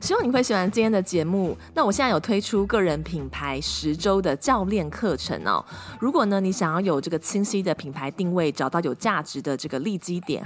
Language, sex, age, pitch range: Chinese, female, 20-39, 150-195 Hz